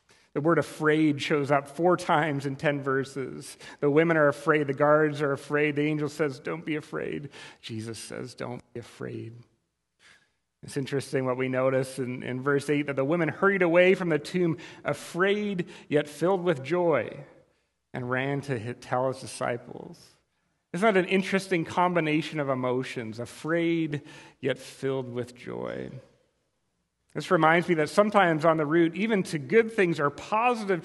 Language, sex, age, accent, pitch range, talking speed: English, male, 40-59, American, 135-175 Hz, 160 wpm